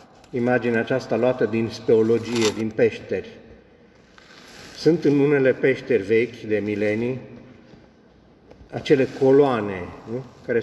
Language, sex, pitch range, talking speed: Romanian, male, 115-140 Hz, 100 wpm